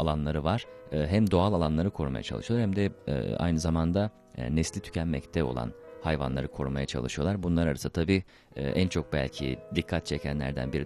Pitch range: 75-90 Hz